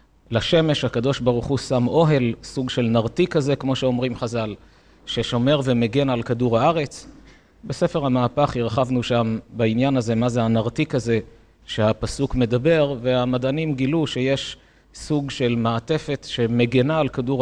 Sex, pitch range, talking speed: male, 115-145 Hz, 135 wpm